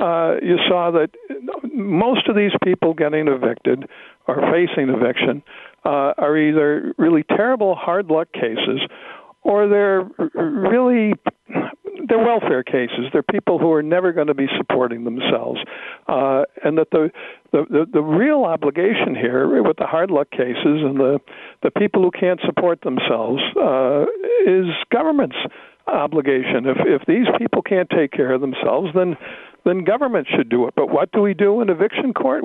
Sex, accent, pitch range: male, American, 145-200 Hz